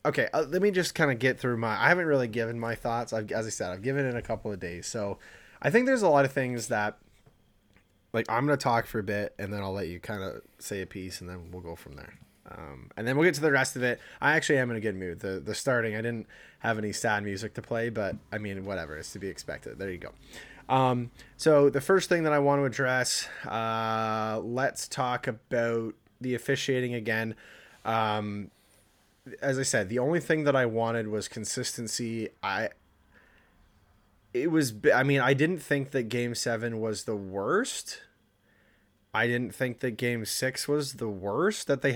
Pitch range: 105-130 Hz